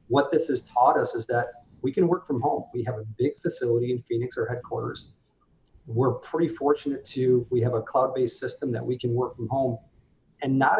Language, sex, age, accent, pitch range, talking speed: English, male, 40-59, American, 120-145 Hz, 210 wpm